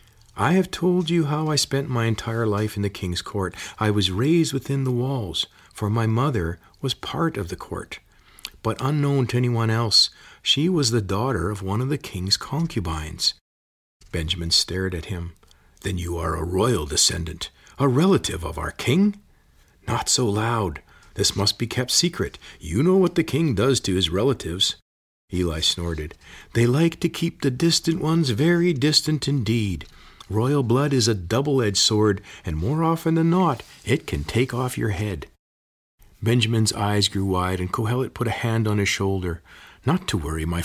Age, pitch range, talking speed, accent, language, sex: 40-59, 90-135 Hz, 175 wpm, American, English, male